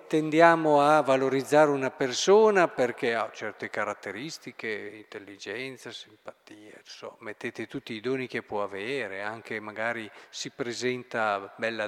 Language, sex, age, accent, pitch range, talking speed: Italian, male, 50-69, native, 125-170 Hz, 120 wpm